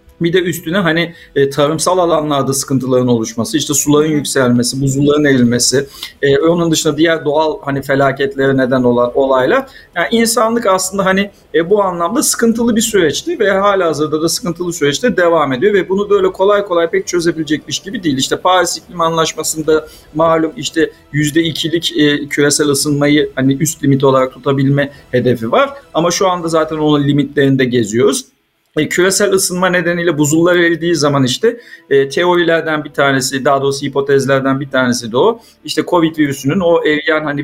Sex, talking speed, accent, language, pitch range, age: male, 150 wpm, native, Turkish, 135-175 Hz, 50-69